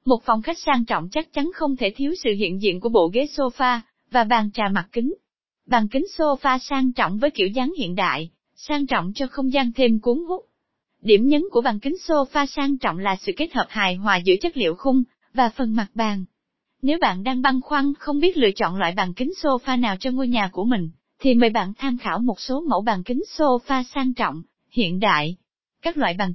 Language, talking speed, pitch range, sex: Vietnamese, 225 wpm, 210-280 Hz, female